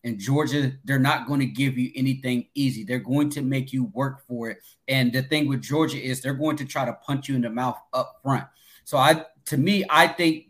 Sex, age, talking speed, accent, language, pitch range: male, 30-49, 240 wpm, American, English, 130-150 Hz